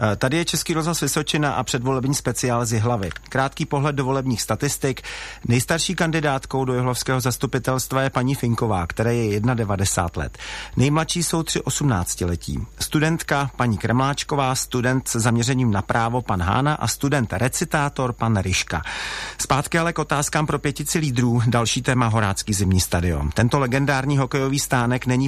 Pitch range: 115-145 Hz